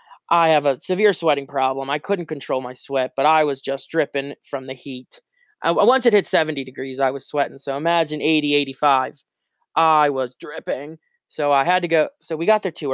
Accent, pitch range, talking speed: American, 140-175 Hz, 210 wpm